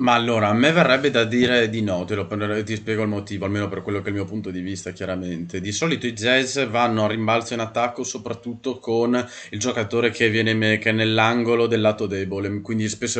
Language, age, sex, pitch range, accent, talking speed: Italian, 20-39, male, 100-115 Hz, native, 225 wpm